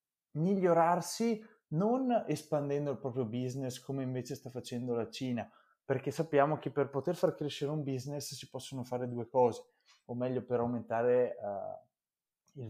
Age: 20-39